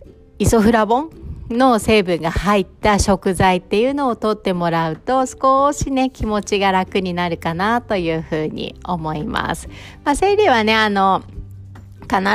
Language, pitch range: Japanese, 165-230 Hz